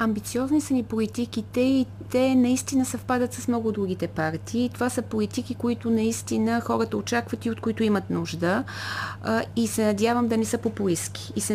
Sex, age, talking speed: female, 30-49, 175 wpm